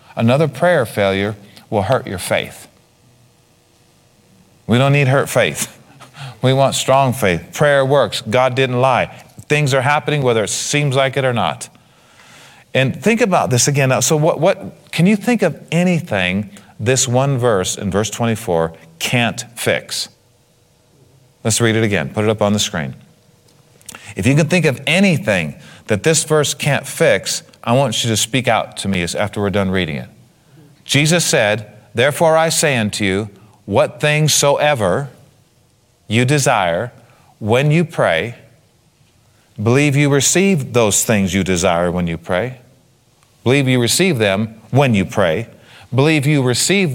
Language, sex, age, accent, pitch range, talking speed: English, male, 40-59, American, 110-150 Hz, 155 wpm